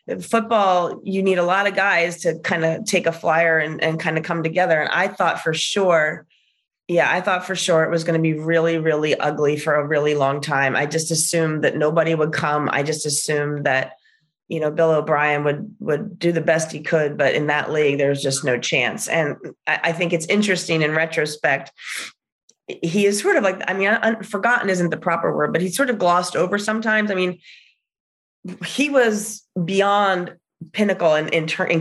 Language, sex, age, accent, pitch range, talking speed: English, female, 30-49, American, 155-195 Hz, 205 wpm